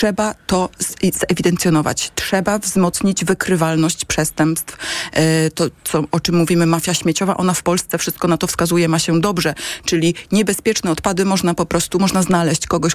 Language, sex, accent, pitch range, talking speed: Polish, female, native, 160-190 Hz, 150 wpm